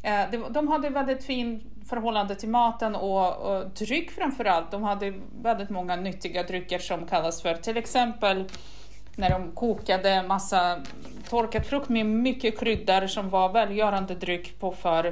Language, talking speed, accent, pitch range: Swedish, 145 wpm, native, 190-240 Hz